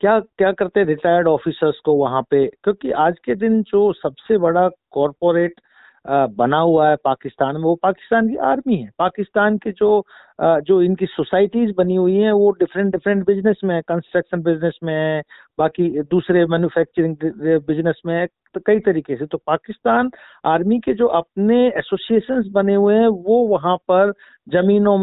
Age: 50-69